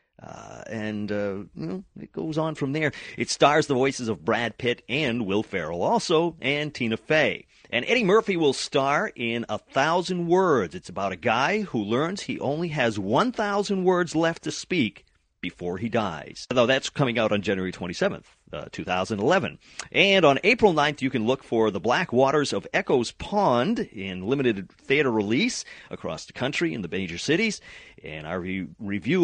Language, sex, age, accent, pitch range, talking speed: English, male, 40-59, American, 100-155 Hz, 175 wpm